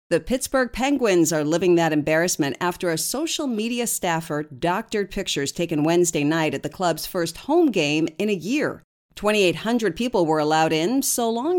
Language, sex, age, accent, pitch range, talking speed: English, female, 50-69, American, 155-220 Hz, 170 wpm